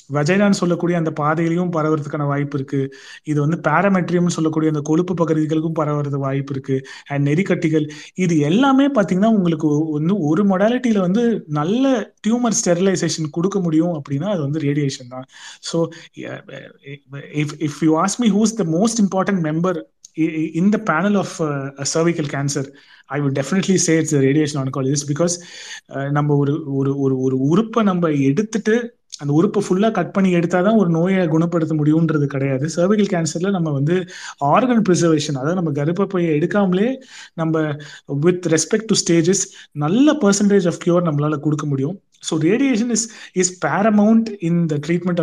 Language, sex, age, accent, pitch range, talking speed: Tamil, male, 30-49, native, 150-190 Hz, 140 wpm